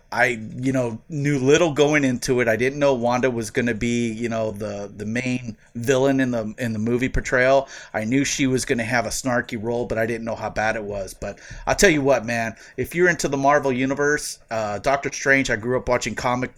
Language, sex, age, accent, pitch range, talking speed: English, male, 30-49, American, 115-140 Hz, 240 wpm